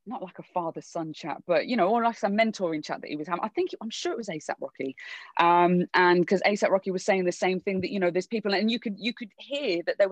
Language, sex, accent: English, female, British